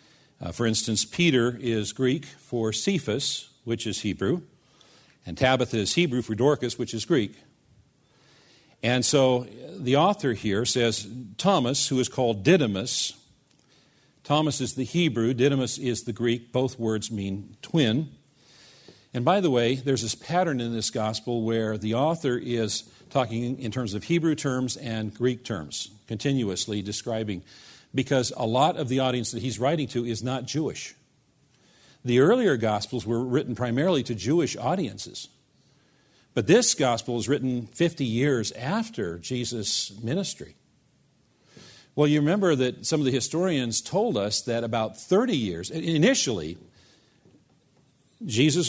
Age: 50-69